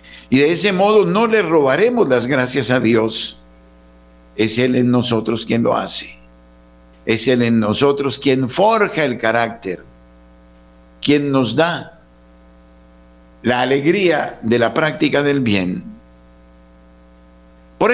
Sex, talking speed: male, 125 wpm